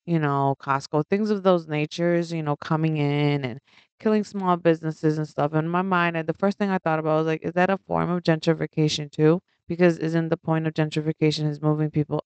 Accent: American